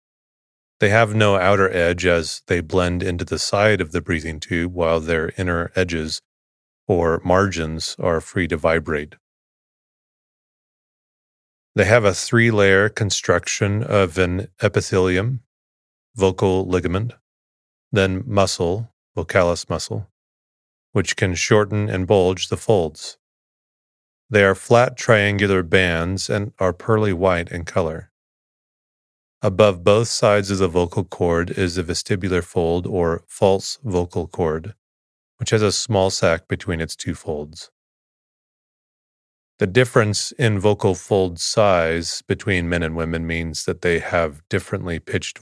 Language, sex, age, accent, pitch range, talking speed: English, male, 30-49, American, 85-105 Hz, 130 wpm